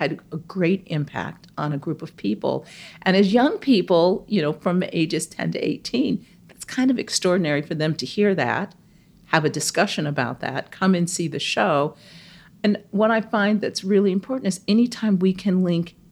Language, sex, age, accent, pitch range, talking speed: English, female, 50-69, American, 160-195 Hz, 190 wpm